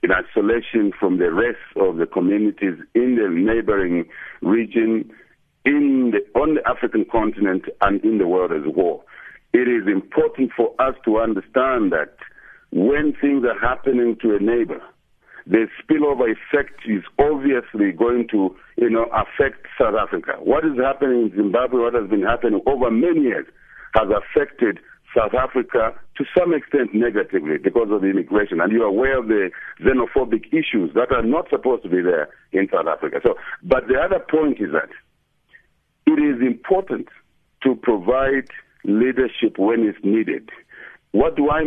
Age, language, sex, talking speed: 60-79, English, male, 160 wpm